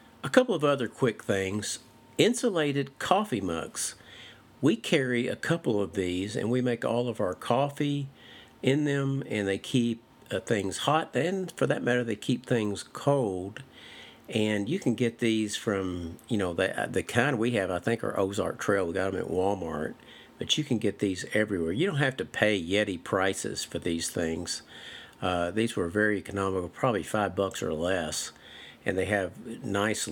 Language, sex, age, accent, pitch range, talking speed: English, male, 50-69, American, 95-130 Hz, 180 wpm